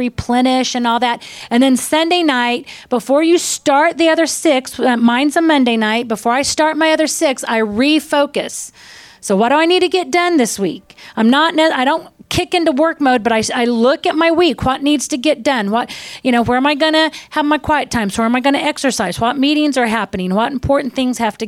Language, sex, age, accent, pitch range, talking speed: English, female, 40-59, American, 225-295 Hz, 230 wpm